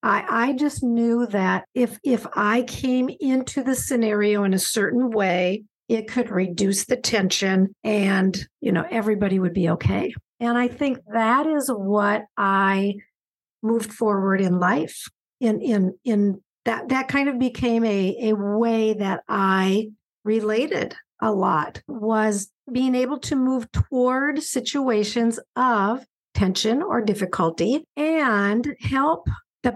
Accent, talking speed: American, 140 wpm